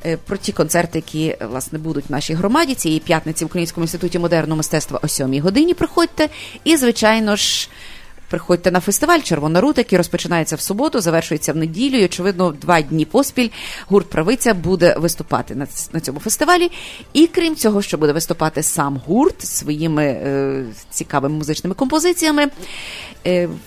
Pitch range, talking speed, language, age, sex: 165-230 Hz, 155 wpm, English, 30-49, female